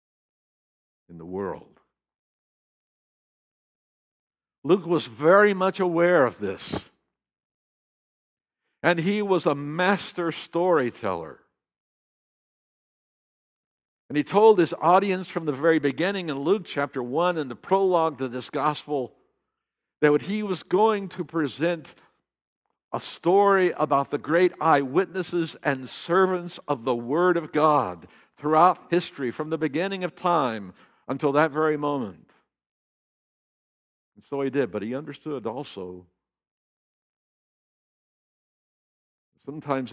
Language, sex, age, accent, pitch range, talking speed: English, male, 60-79, American, 125-180 Hz, 110 wpm